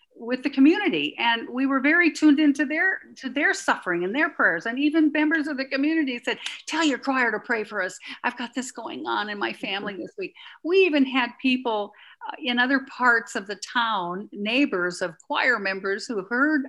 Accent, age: American, 50-69